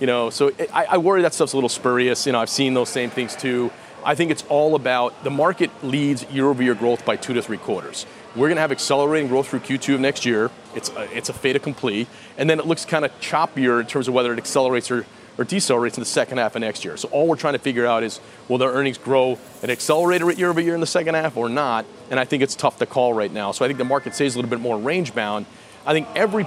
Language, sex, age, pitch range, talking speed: English, male, 30-49, 125-150 Hz, 265 wpm